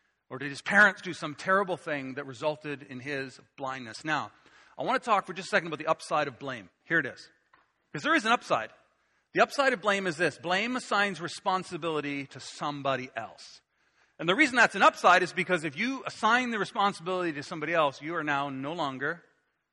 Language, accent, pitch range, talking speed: English, American, 150-205 Hz, 205 wpm